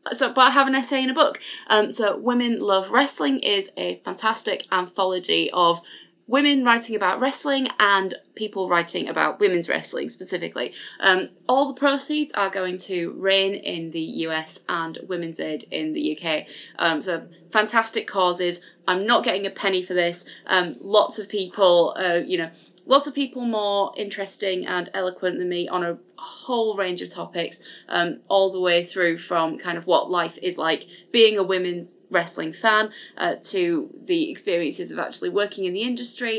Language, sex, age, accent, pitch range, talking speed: English, female, 20-39, British, 175-230 Hz, 175 wpm